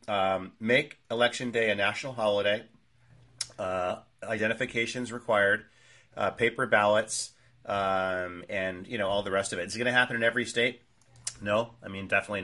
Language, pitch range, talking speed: English, 95-125 Hz, 165 wpm